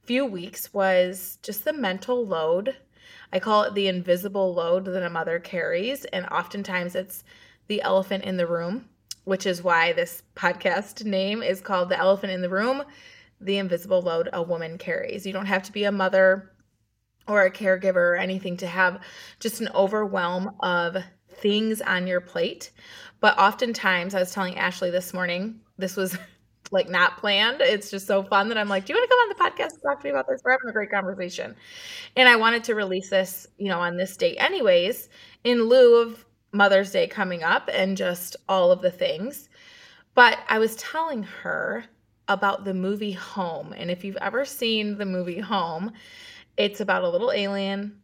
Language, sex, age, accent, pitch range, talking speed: English, female, 20-39, American, 185-230 Hz, 190 wpm